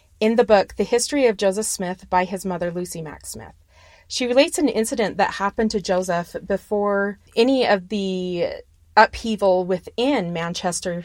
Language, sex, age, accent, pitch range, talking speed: English, female, 30-49, American, 185-240 Hz, 155 wpm